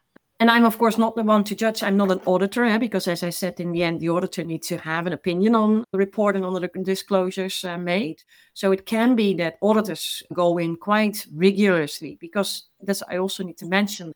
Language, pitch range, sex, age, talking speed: English, 175-215 Hz, female, 40-59, 225 wpm